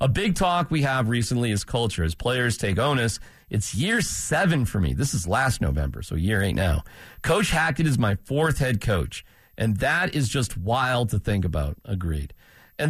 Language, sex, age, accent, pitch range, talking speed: English, male, 40-59, American, 105-175 Hz, 195 wpm